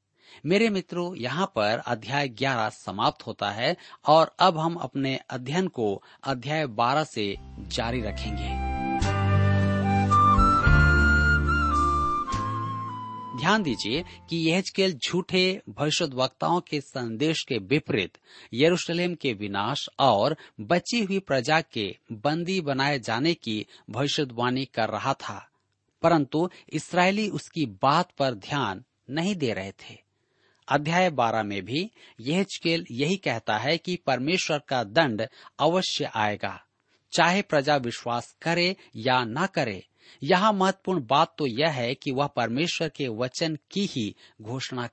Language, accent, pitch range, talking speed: Hindi, native, 110-165 Hz, 125 wpm